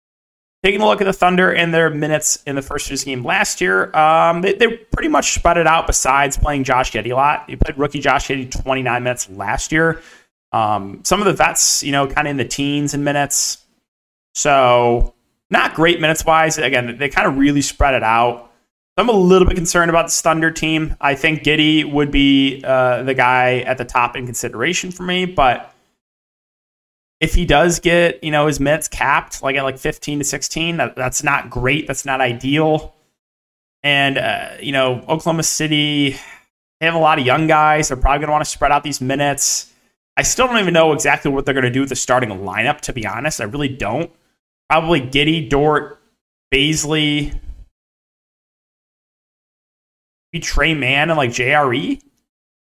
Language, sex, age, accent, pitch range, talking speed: English, male, 30-49, American, 130-160 Hz, 190 wpm